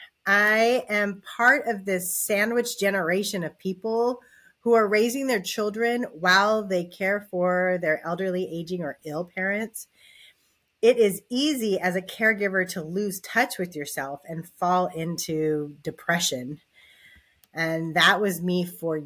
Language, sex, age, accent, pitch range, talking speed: English, female, 30-49, American, 180-235 Hz, 140 wpm